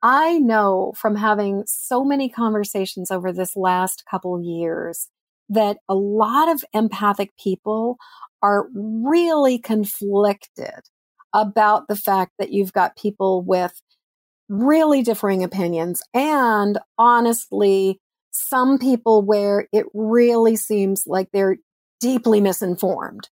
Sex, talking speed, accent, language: female, 115 wpm, American, English